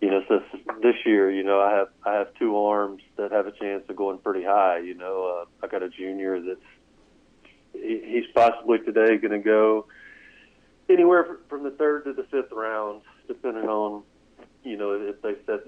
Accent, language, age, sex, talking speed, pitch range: American, English, 40-59, male, 195 wpm, 95-115 Hz